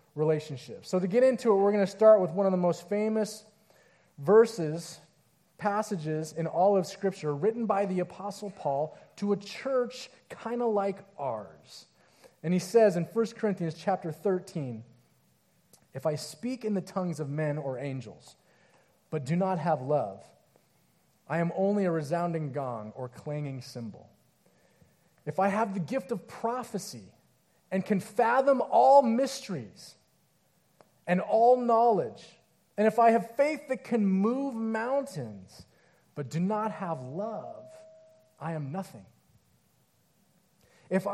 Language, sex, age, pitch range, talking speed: English, male, 30-49, 155-220 Hz, 145 wpm